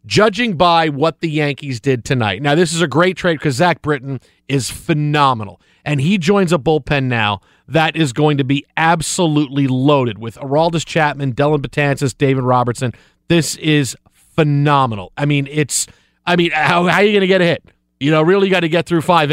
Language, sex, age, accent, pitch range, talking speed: English, male, 40-59, American, 140-200 Hz, 200 wpm